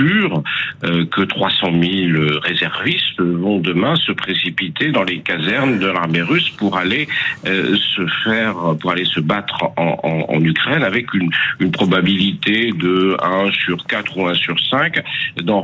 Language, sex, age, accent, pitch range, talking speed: French, male, 50-69, French, 85-105 Hz, 150 wpm